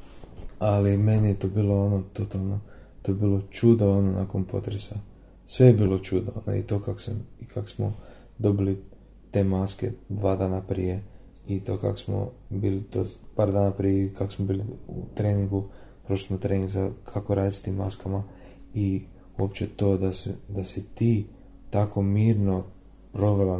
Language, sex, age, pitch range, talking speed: Croatian, male, 30-49, 95-105 Hz, 170 wpm